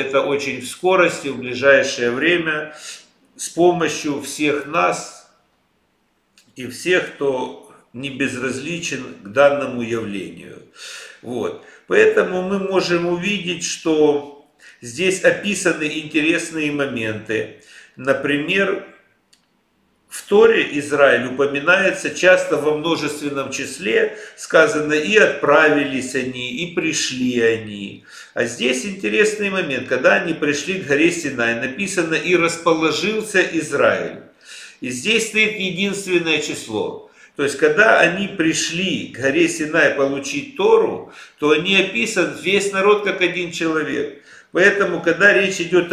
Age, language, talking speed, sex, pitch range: 50-69, Russian, 110 wpm, male, 140-190 Hz